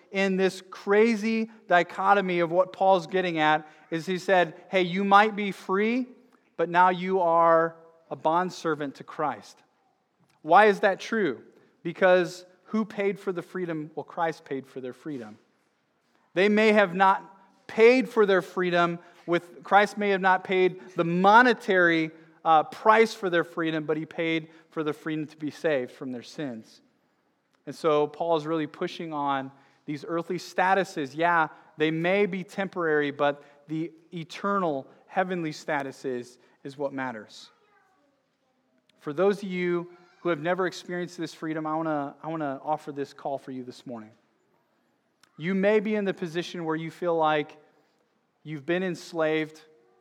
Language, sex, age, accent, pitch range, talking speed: English, male, 30-49, American, 155-190 Hz, 155 wpm